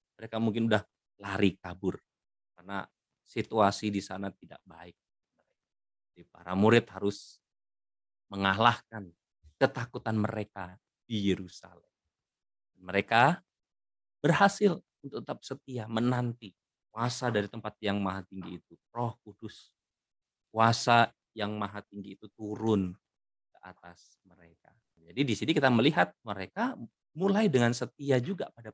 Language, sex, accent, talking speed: Indonesian, male, native, 115 wpm